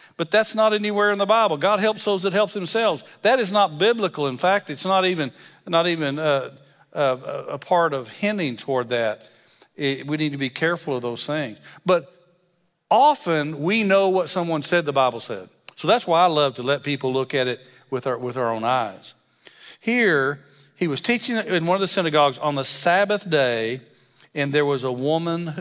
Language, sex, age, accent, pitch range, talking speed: English, male, 50-69, American, 130-185 Hz, 200 wpm